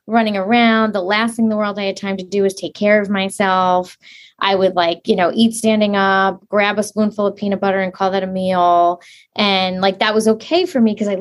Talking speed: 245 wpm